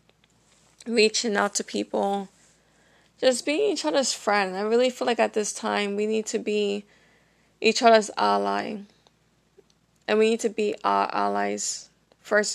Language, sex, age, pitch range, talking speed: English, female, 20-39, 190-225 Hz, 150 wpm